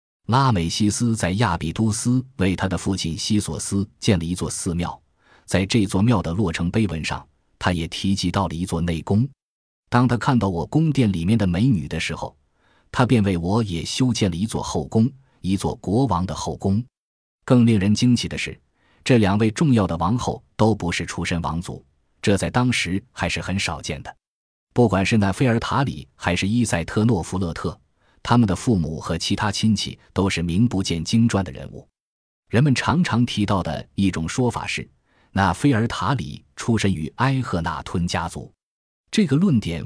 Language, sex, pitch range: Chinese, male, 85-115 Hz